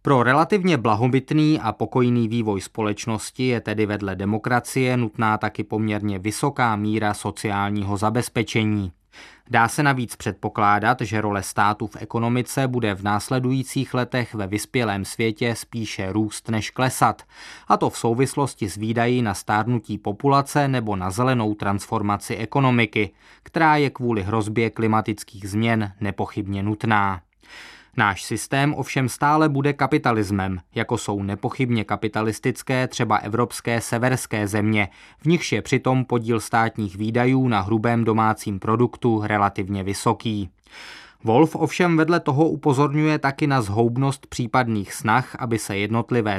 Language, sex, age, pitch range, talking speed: Czech, male, 20-39, 105-125 Hz, 130 wpm